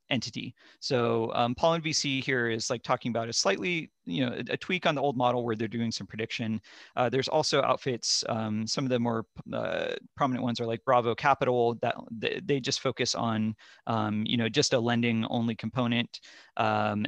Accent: American